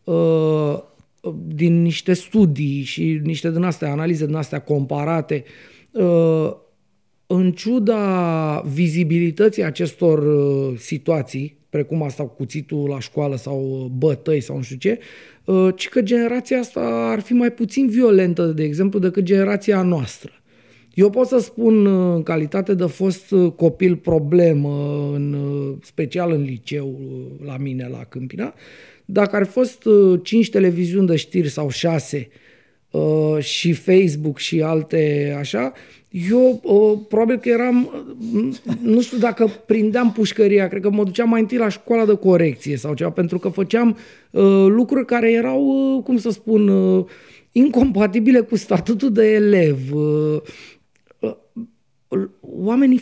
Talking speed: 125 wpm